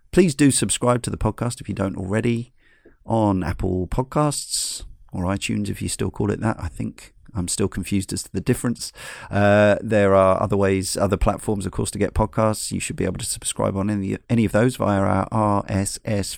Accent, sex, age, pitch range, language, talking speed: British, male, 40-59, 95-115 Hz, English, 205 wpm